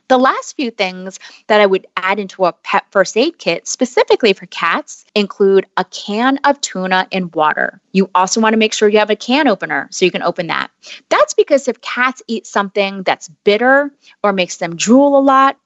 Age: 30-49